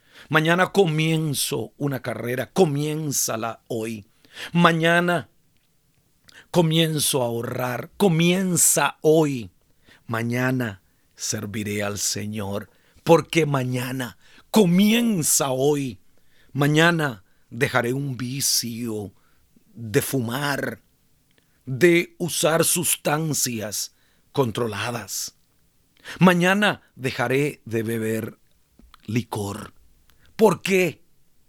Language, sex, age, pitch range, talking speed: Spanish, male, 40-59, 115-170 Hz, 70 wpm